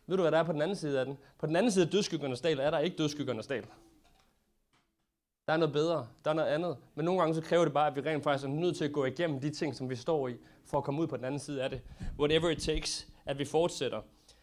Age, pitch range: 30-49, 145-190 Hz